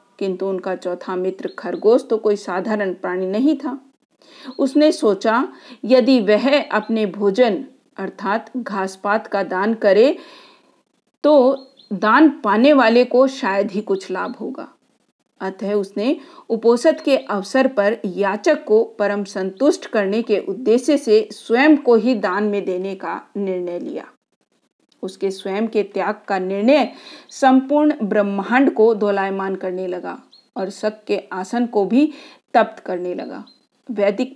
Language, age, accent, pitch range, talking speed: Hindi, 50-69, native, 200-265 Hz, 135 wpm